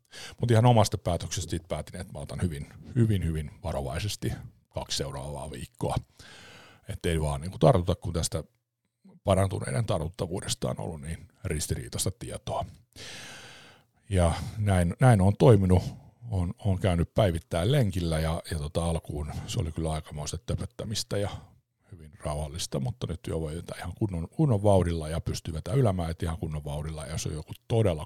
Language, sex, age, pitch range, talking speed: Finnish, male, 50-69, 80-110 Hz, 150 wpm